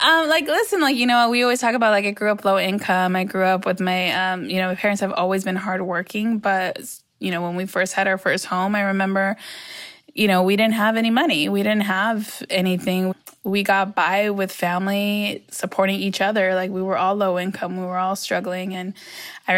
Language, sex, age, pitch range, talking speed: English, female, 20-39, 185-210 Hz, 225 wpm